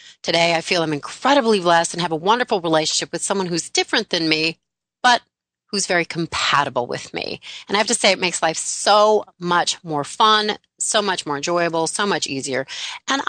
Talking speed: 195 wpm